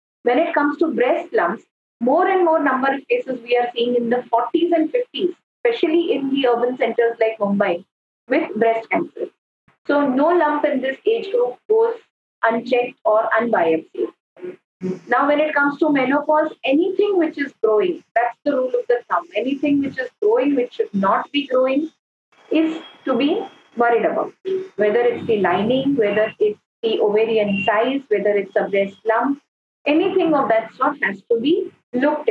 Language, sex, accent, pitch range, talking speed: English, female, Indian, 230-305 Hz, 175 wpm